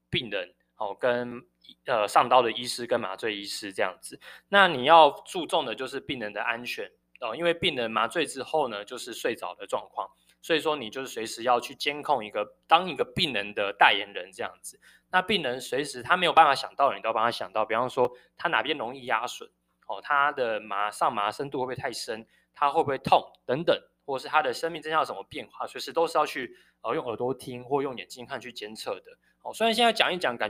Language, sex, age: Chinese, male, 20-39